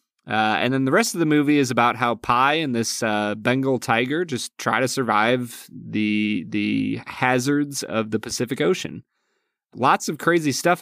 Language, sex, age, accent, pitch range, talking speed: English, male, 20-39, American, 110-145 Hz, 175 wpm